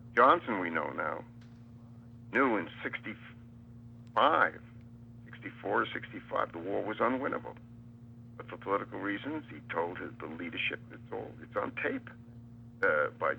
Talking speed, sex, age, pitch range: 130 wpm, male, 60-79, 115-120 Hz